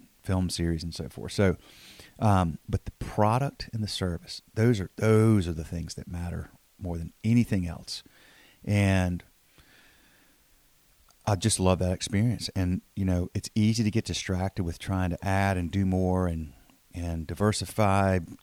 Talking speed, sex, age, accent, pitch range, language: 160 wpm, male, 40-59, American, 85-105 Hz, English